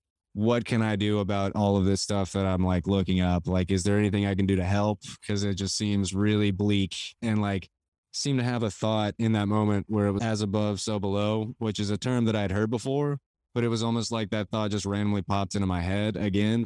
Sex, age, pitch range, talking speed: male, 20-39, 100-110 Hz, 245 wpm